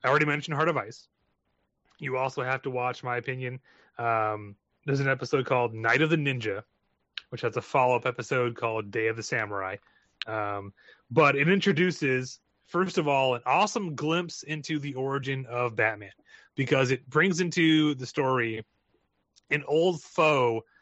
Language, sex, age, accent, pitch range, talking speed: English, male, 30-49, American, 115-150 Hz, 160 wpm